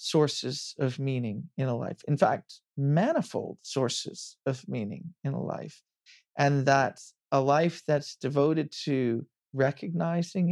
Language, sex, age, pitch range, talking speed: English, male, 40-59, 135-165 Hz, 130 wpm